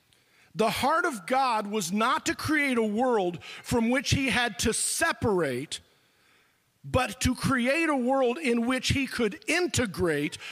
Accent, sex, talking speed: American, male, 150 wpm